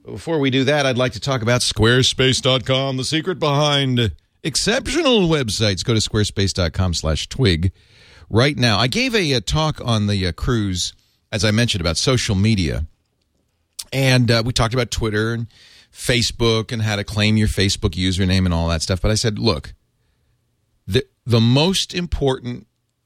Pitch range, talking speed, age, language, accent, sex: 105-140 Hz, 165 wpm, 40-59, English, American, male